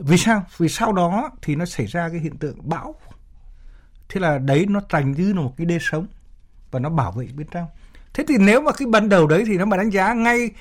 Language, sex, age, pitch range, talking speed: Vietnamese, male, 60-79, 115-165 Hz, 250 wpm